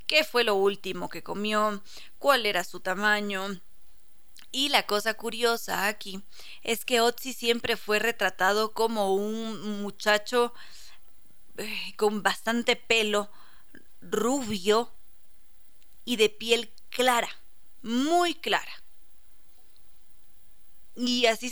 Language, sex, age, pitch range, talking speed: Spanish, female, 20-39, 205-245 Hz, 100 wpm